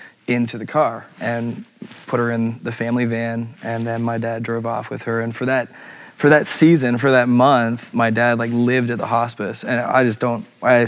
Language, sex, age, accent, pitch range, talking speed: English, male, 20-39, American, 115-125 Hz, 215 wpm